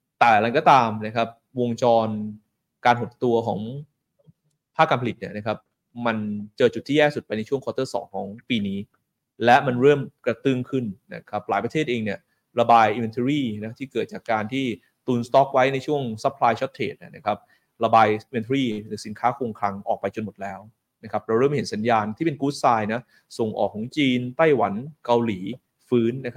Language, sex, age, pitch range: Thai, male, 20-39, 110-140 Hz